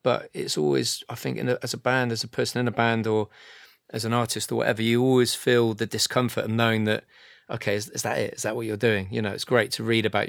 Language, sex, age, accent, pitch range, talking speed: English, male, 30-49, British, 105-120 Hz, 275 wpm